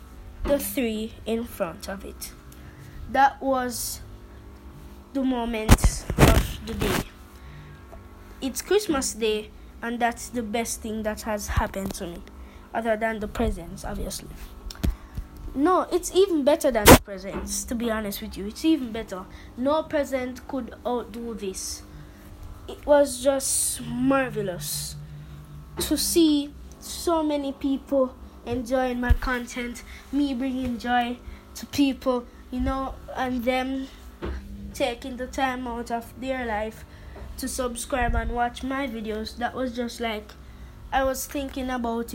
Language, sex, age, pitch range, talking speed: English, female, 20-39, 200-270 Hz, 130 wpm